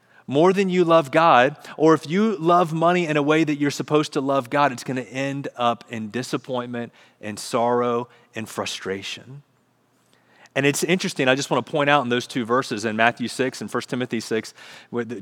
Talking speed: 195 wpm